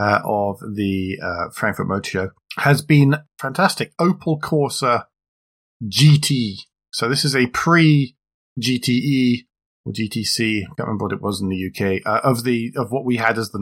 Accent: British